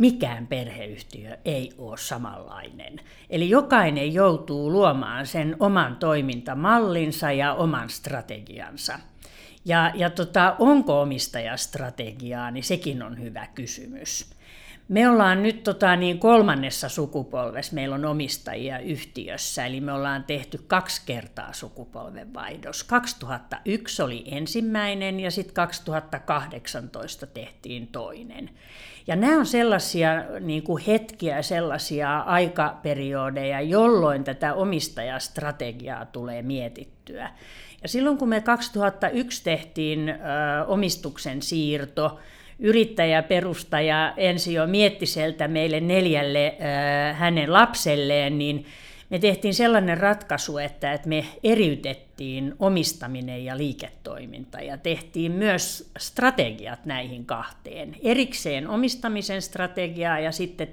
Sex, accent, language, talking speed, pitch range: female, native, Finnish, 105 wpm, 140-190 Hz